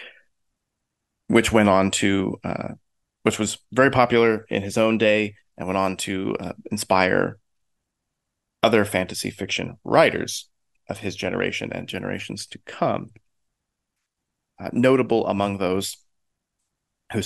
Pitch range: 100-115 Hz